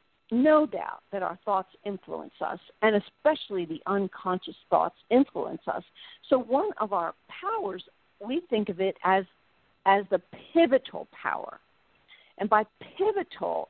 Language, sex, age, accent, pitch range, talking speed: English, female, 50-69, American, 195-275 Hz, 135 wpm